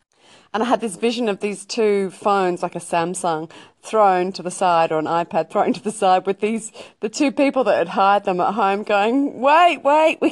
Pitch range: 165-210 Hz